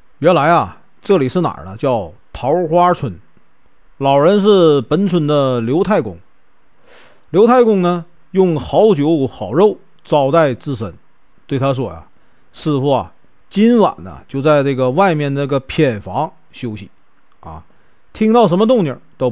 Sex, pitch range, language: male, 135-205 Hz, Chinese